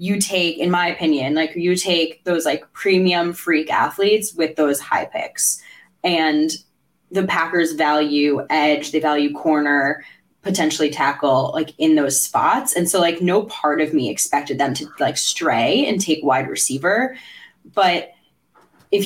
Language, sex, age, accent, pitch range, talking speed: English, female, 10-29, American, 155-195 Hz, 155 wpm